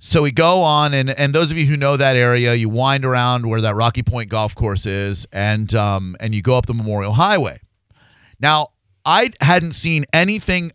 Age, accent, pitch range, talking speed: 30-49, American, 110-145 Hz, 205 wpm